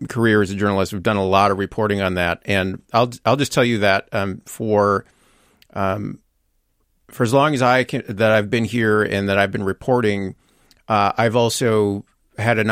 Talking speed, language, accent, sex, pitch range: 200 wpm, English, American, male, 100-115 Hz